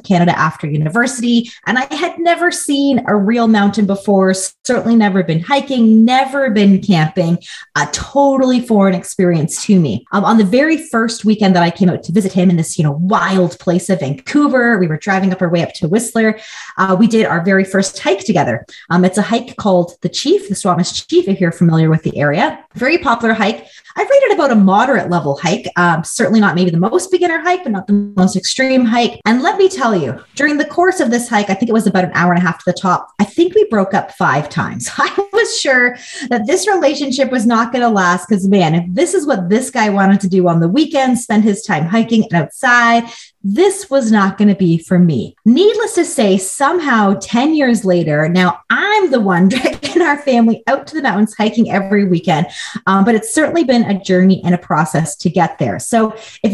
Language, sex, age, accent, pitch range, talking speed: English, female, 30-49, American, 185-260 Hz, 220 wpm